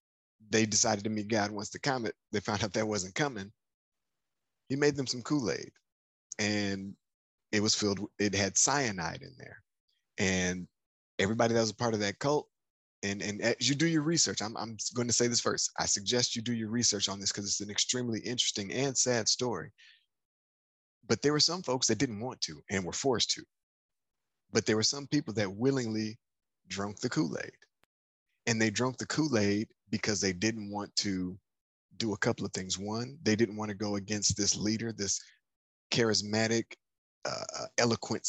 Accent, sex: American, male